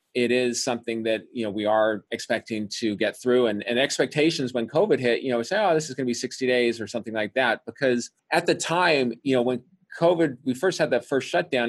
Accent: American